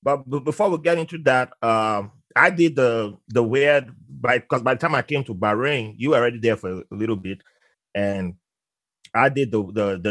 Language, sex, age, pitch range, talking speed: English, male, 30-49, 100-120 Hz, 200 wpm